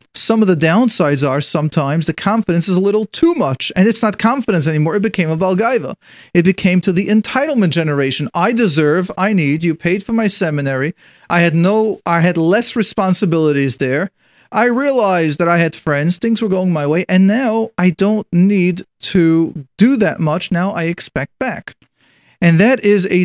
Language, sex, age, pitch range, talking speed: English, male, 40-59, 160-205 Hz, 190 wpm